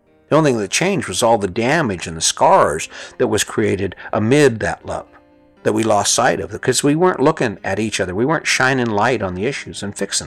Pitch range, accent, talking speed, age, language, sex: 110-140 Hz, American, 230 wpm, 50-69, English, male